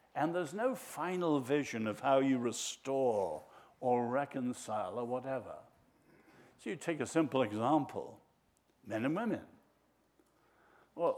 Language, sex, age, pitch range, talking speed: English, male, 60-79, 120-170 Hz, 125 wpm